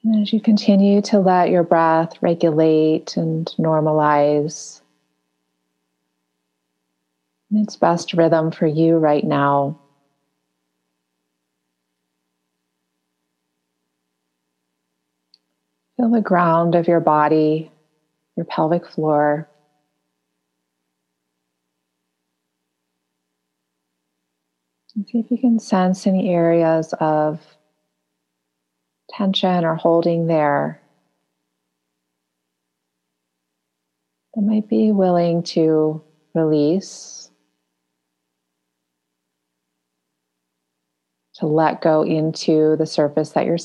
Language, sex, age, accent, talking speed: English, female, 30-49, American, 75 wpm